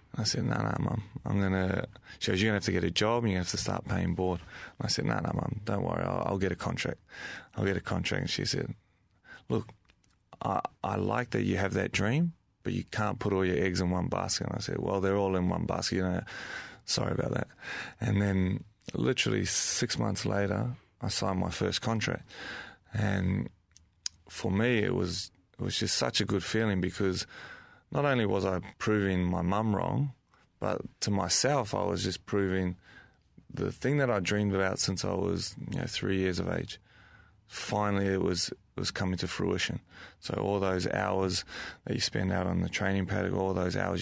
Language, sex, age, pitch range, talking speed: English, male, 20-39, 90-110 Hz, 220 wpm